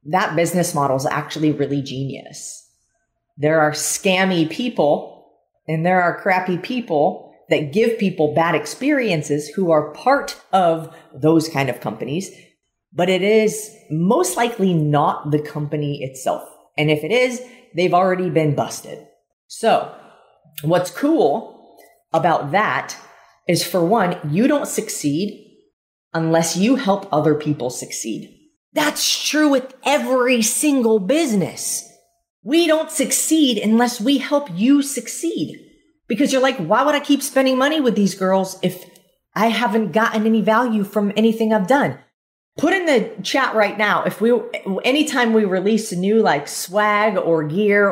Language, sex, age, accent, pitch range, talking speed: English, female, 30-49, American, 170-240 Hz, 145 wpm